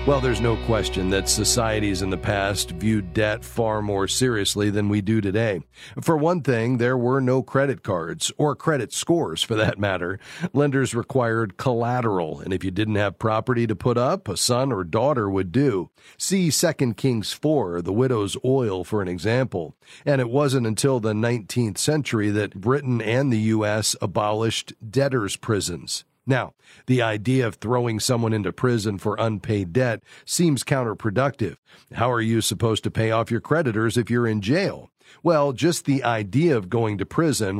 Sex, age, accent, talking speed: male, 40-59, American, 175 wpm